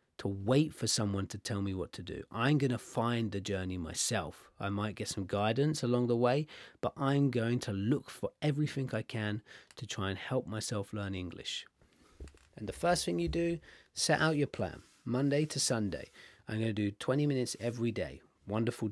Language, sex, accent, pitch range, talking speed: English, male, British, 100-125 Hz, 200 wpm